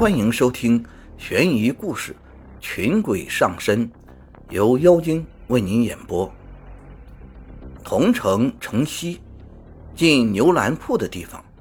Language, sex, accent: Chinese, male, native